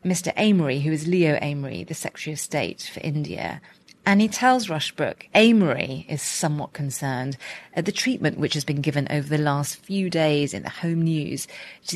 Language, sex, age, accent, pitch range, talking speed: English, female, 30-49, British, 150-195 Hz, 185 wpm